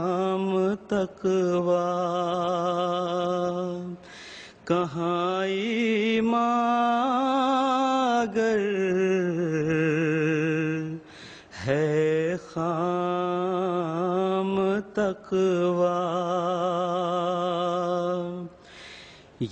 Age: 30-49